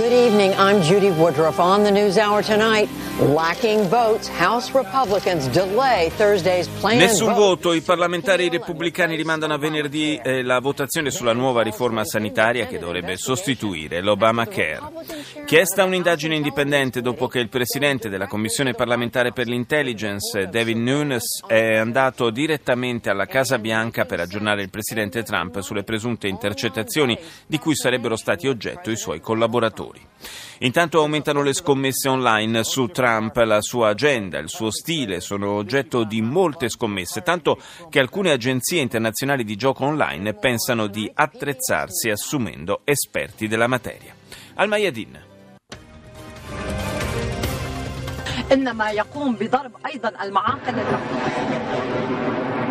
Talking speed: 110 wpm